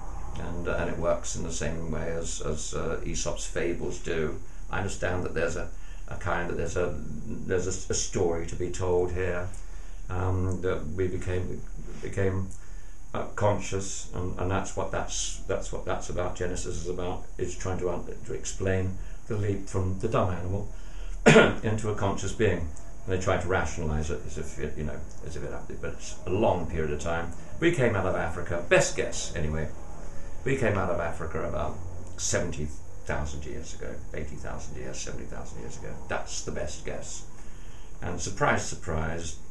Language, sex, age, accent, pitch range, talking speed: English, male, 50-69, British, 75-90 Hz, 180 wpm